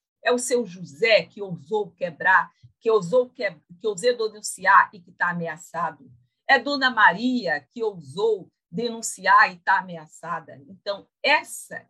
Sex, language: female, Portuguese